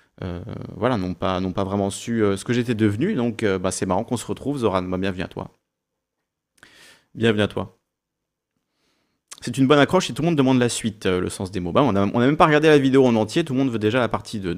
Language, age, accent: French, 30-49, French